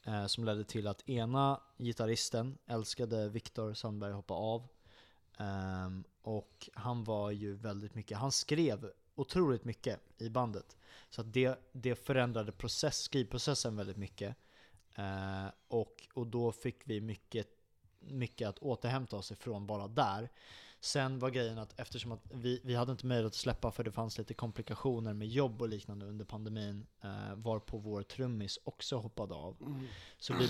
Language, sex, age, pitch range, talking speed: Swedish, male, 20-39, 105-125 Hz, 165 wpm